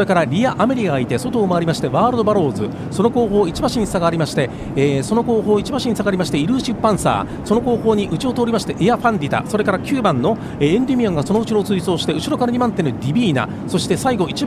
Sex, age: male, 40-59